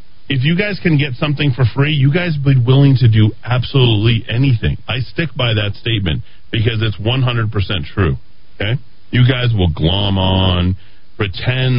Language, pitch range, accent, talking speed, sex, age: English, 100-140 Hz, American, 170 wpm, male, 40-59